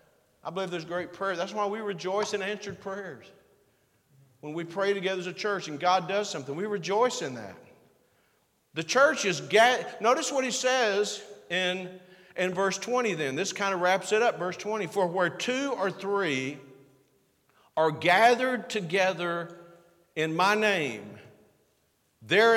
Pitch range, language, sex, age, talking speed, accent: 170-225 Hz, English, male, 50-69, 160 wpm, American